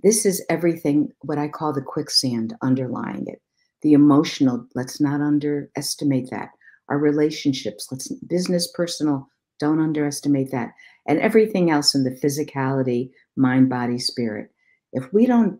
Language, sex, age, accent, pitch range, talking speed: English, female, 60-79, American, 135-170 Hz, 140 wpm